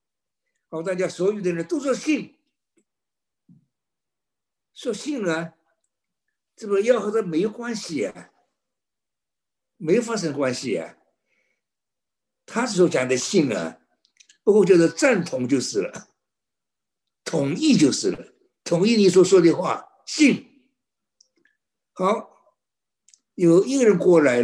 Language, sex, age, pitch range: Chinese, male, 60-79, 165-235 Hz